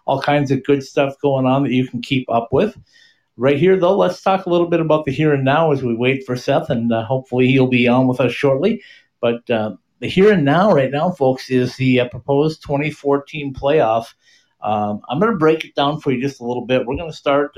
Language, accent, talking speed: English, American, 245 wpm